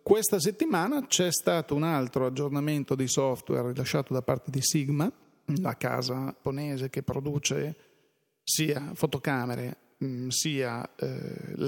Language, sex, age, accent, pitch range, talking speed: Italian, male, 40-59, native, 130-155 Hz, 120 wpm